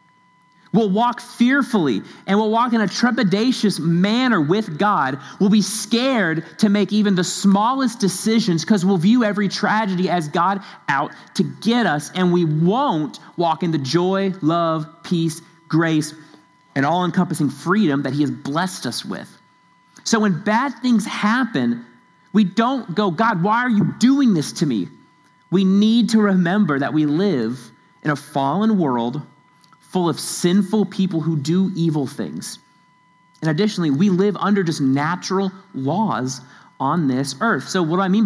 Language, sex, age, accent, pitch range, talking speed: English, male, 40-59, American, 155-210 Hz, 160 wpm